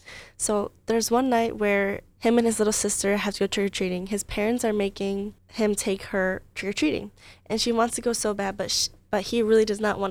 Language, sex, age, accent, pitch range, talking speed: English, female, 10-29, American, 195-225 Hz, 220 wpm